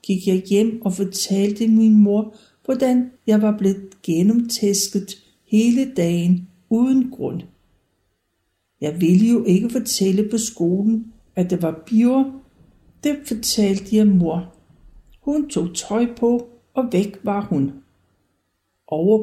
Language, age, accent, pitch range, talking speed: Danish, 60-79, native, 175-225 Hz, 125 wpm